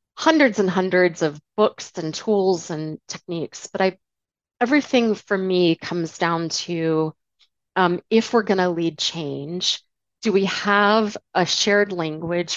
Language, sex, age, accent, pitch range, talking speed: English, female, 30-49, American, 170-215 Hz, 145 wpm